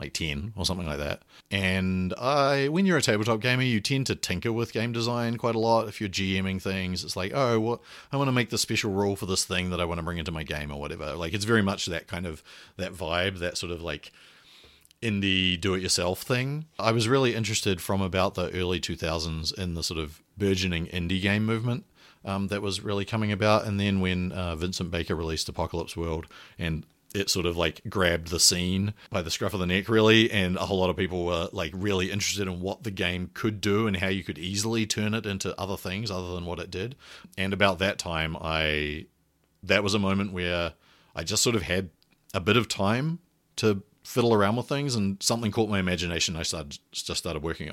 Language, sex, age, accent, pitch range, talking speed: English, male, 40-59, Australian, 85-110 Hz, 225 wpm